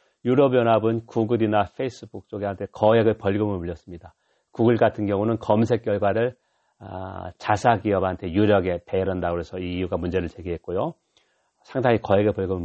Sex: male